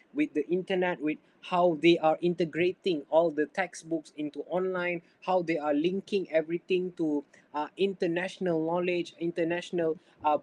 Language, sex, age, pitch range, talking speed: English, male, 20-39, 150-195 Hz, 140 wpm